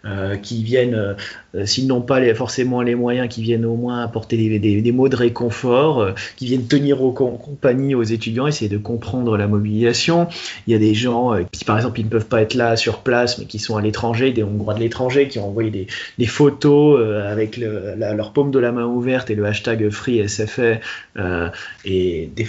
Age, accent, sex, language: 20-39, French, male, French